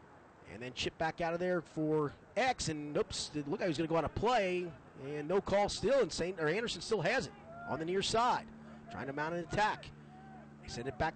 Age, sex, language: 30-49, male, English